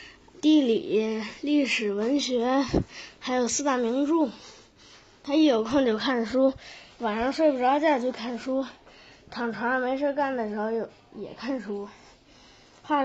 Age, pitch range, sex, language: 10-29, 230-275 Hz, female, Chinese